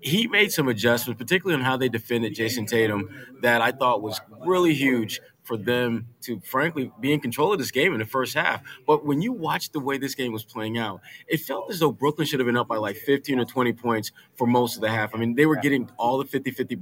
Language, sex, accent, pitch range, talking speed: English, male, American, 115-140 Hz, 250 wpm